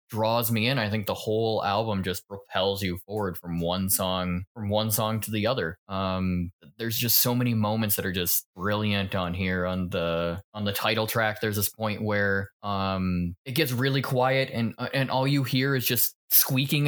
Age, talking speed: 20-39, 200 wpm